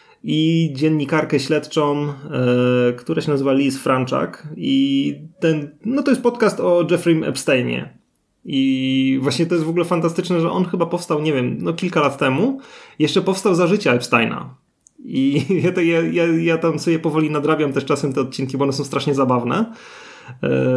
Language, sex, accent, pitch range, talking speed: Polish, male, native, 135-170 Hz, 175 wpm